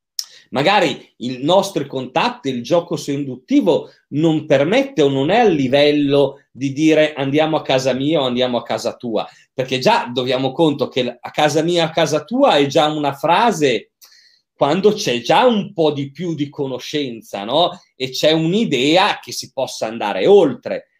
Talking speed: 165 wpm